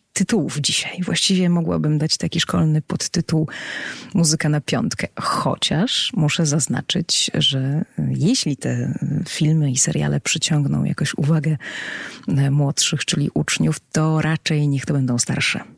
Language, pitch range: Polish, 145-190 Hz